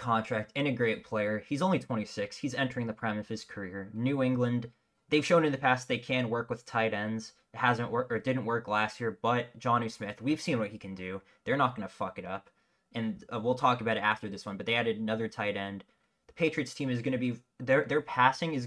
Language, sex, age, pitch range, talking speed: English, male, 20-39, 105-125 Hz, 250 wpm